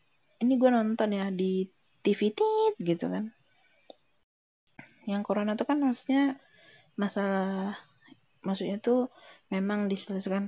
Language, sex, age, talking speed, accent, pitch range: Indonesian, female, 20-39, 105 wpm, native, 175-220 Hz